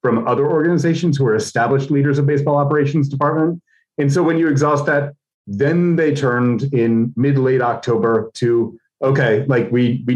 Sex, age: male, 30-49